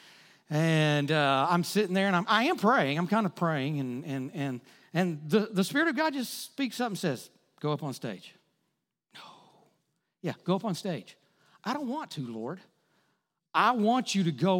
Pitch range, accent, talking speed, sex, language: 140-205 Hz, American, 195 wpm, male, English